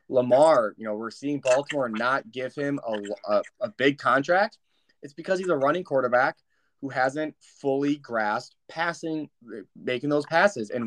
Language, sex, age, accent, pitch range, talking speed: English, male, 20-39, American, 115-150 Hz, 160 wpm